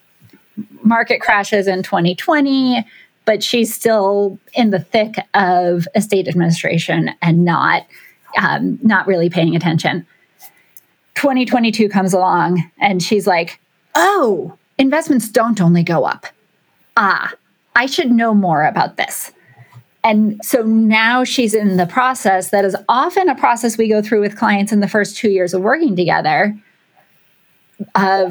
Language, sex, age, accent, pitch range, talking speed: English, female, 30-49, American, 185-230 Hz, 140 wpm